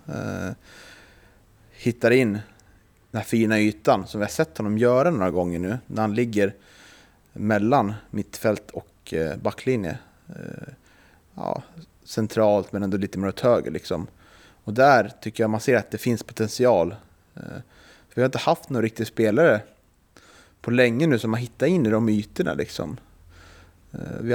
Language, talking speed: Swedish, 150 wpm